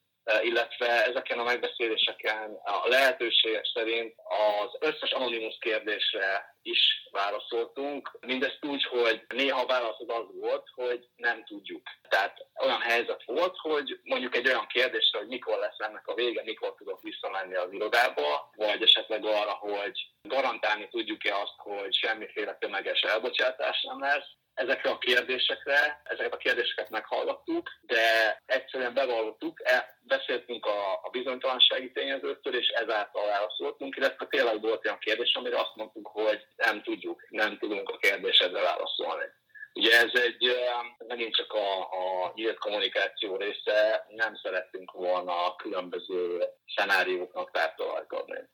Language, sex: Hungarian, male